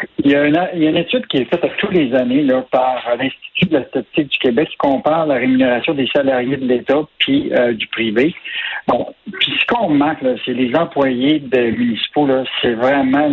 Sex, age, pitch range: male, 60-79, 130-180 Hz